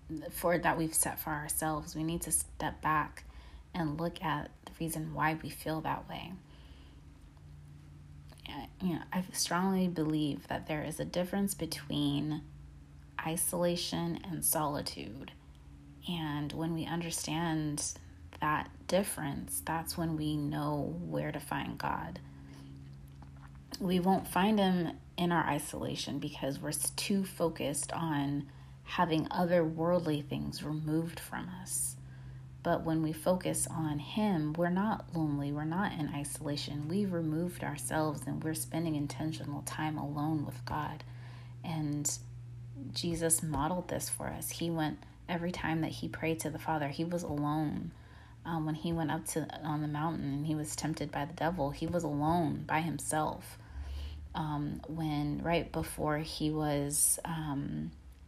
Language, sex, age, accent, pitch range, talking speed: English, female, 30-49, American, 120-165 Hz, 145 wpm